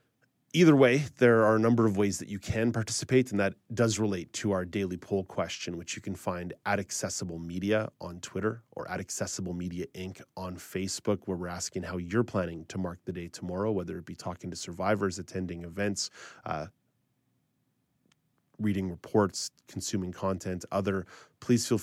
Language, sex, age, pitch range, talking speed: English, male, 30-49, 90-105 Hz, 175 wpm